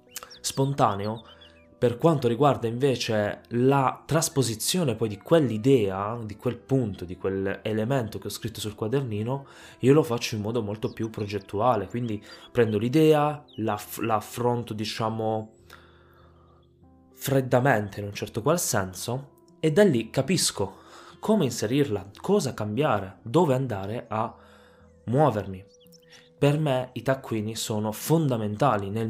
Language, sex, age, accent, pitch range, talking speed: Italian, male, 20-39, native, 105-130 Hz, 125 wpm